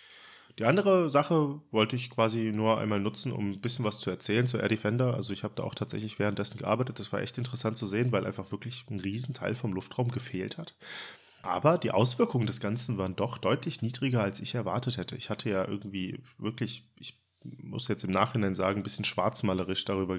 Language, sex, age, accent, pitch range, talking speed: German, male, 30-49, German, 100-125 Hz, 205 wpm